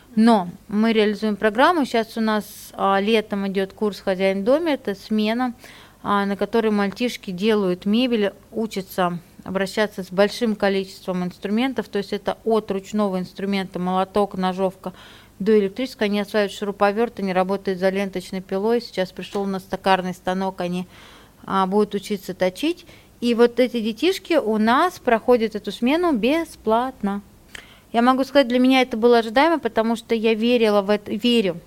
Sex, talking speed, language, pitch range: female, 150 wpm, Russian, 195-230 Hz